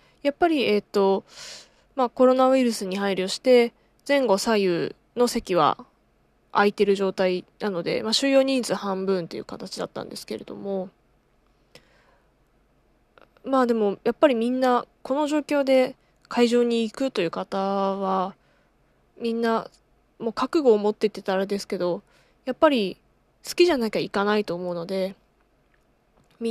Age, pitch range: 20-39, 190-245 Hz